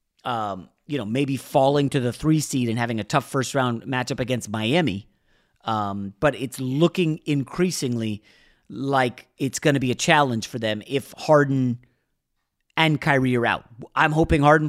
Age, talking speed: 30-49, 170 wpm